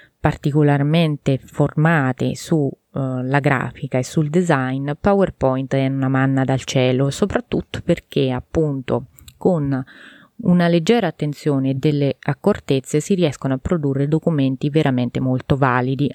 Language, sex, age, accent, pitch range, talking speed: Italian, female, 20-39, native, 135-170 Hz, 115 wpm